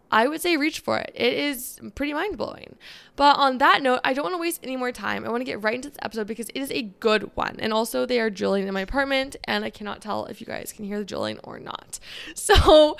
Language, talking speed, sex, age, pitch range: English, 270 wpm, female, 20-39, 200-255 Hz